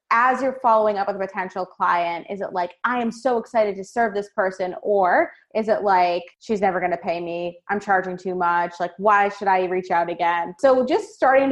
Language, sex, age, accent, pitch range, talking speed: English, female, 20-39, American, 185-250 Hz, 220 wpm